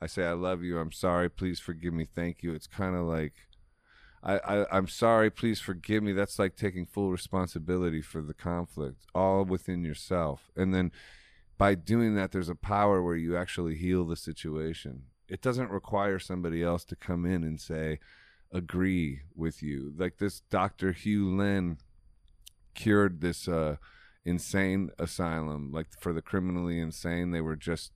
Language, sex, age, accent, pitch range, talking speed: English, male, 30-49, American, 80-95 Hz, 170 wpm